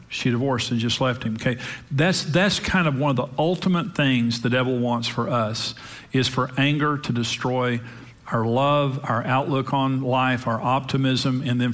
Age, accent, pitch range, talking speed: 50-69, American, 125-155 Hz, 185 wpm